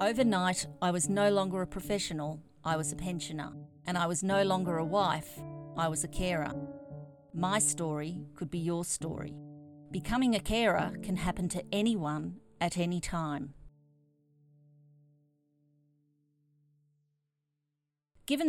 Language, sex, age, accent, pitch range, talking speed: English, female, 40-59, Australian, 160-200 Hz, 125 wpm